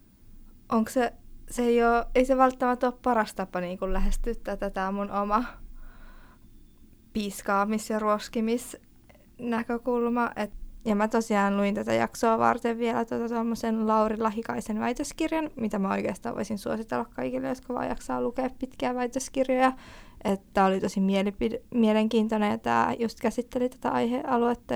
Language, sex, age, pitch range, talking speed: Finnish, female, 20-39, 200-240 Hz, 115 wpm